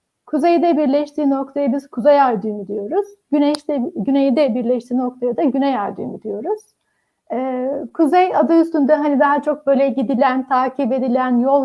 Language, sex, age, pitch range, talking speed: Turkish, female, 60-79, 250-320 Hz, 140 wpm